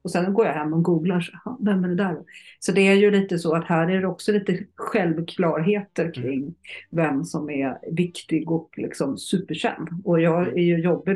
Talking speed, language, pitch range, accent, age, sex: 200 wpm, Swedish, 150-185 Hz, native, 50-69, female